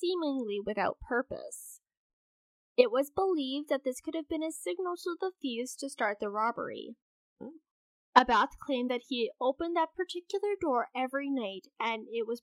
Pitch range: 230-300 Hz